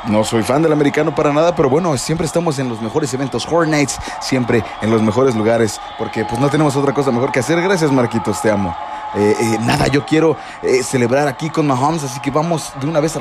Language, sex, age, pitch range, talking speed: Spanish, male, 30-49, 115-150 Hz, 230 wpm